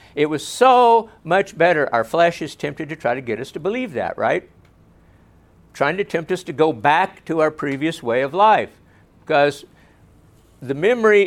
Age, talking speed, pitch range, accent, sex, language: 60-79, 180 wpm, 120-170 Hz, American, male, English